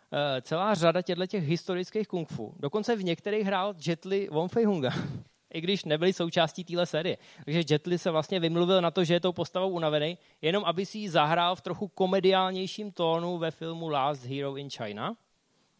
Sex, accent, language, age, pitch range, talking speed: male, native, Czech, 20-39, 150-190 Hz, 180 wpm